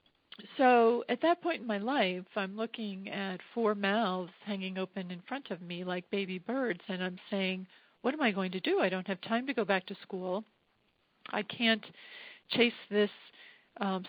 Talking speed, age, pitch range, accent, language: 190 wpm, 40-59, 190-225 Hz, American, English